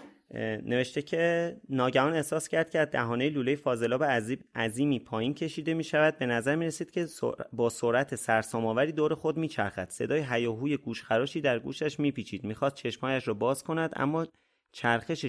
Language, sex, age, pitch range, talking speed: Persian, male, 30-49, 120-155 Hz, 170 wpm